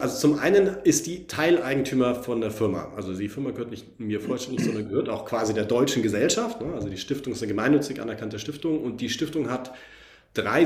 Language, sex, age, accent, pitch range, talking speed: German, male, 40-59, German, 105-130 Hz, 205 wpm